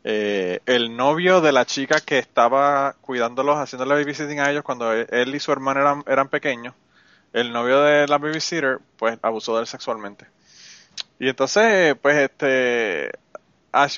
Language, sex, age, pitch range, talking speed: Spanish, male, 20-39, 130-160 Hz, 155 wpm